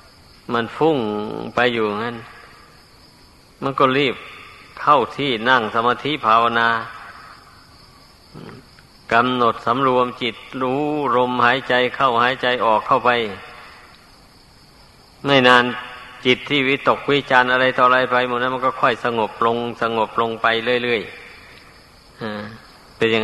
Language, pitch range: Thai, 115-130 Hz